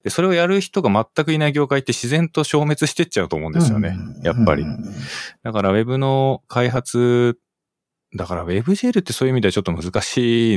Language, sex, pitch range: Japanese, male, 90-130 Hz